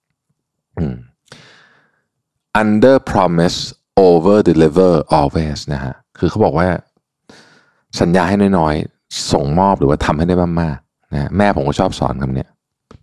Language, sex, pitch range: Thai, male, 80-120 Hz